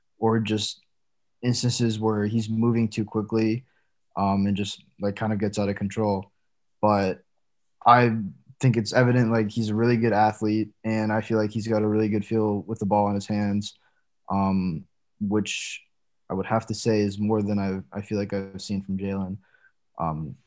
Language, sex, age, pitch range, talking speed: English, male, 20-39, 105-125 Hz, 190 wpm